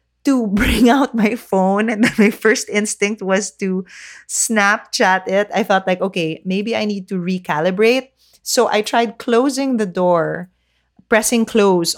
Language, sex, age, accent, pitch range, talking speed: English, female, 20-39, Filipino, 165-220 Hz, 155 wpm